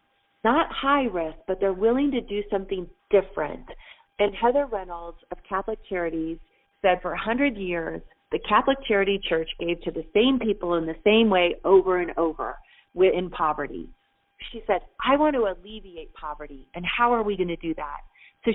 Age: 30-49